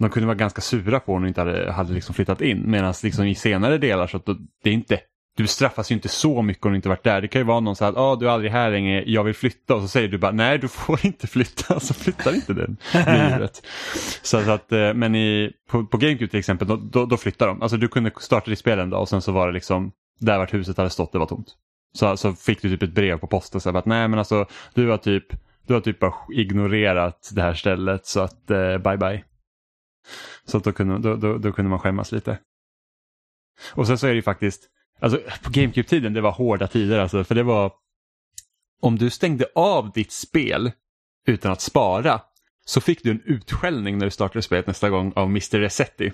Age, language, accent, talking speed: 20-39, Swedish, Norwegian, 240 wpm